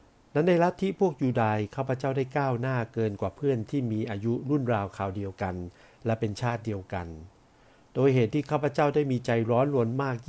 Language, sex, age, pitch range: Thai, male, 60-79, 110-135 Hz